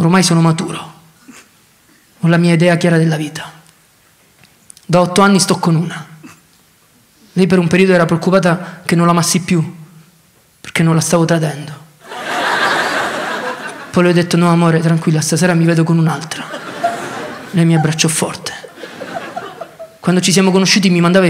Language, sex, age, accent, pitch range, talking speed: Italian, male, 20-39, native, 165-195 Hz, 150 wpm